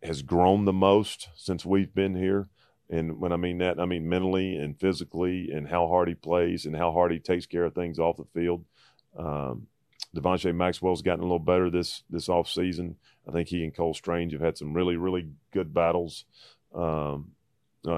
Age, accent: 30-49, American